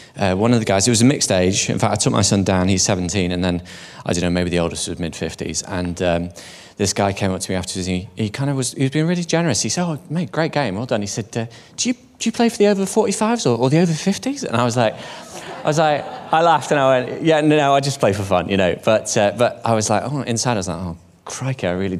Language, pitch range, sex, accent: English, 95-130 Hz, male, British